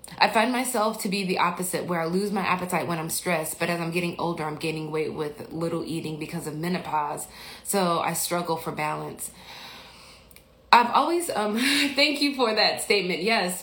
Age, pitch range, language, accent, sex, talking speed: 20-39, 170-220 Hz, English, American, female, 190 wpm